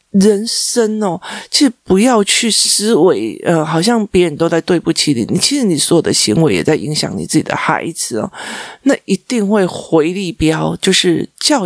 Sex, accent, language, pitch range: male, native, Chinese, 170-230 Hz